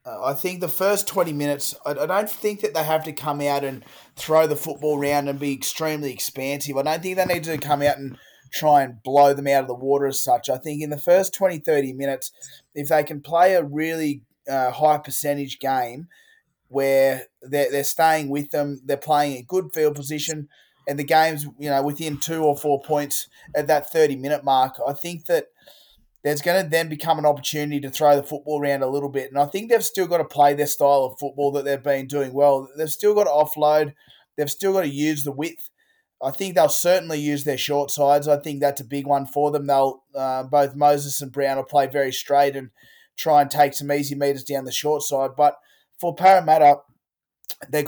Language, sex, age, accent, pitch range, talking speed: English, male, 20-39, Australian, 140-155 Hz, 220 wpm